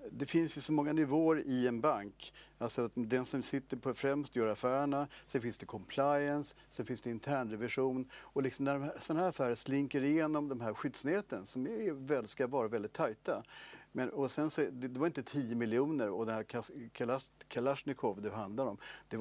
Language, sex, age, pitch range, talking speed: English, male, 50-69, 115-140 Hz, 200 wpm